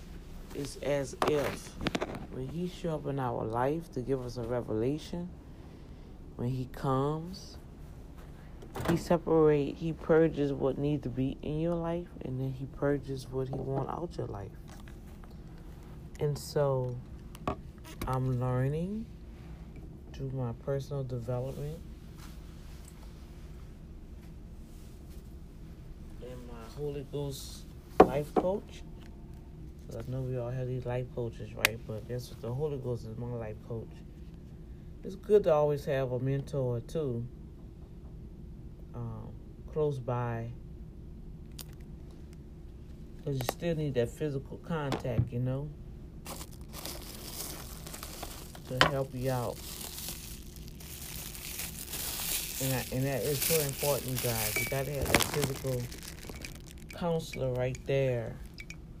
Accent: American